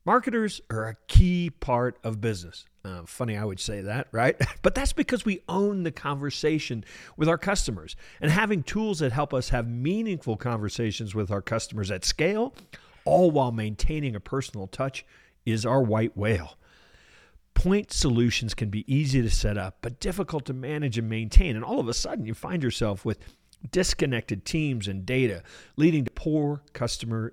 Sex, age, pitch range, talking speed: male, 50-69, 105-150 Hz, 175 wpm